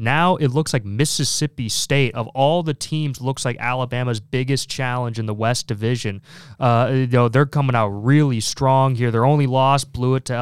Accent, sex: American, male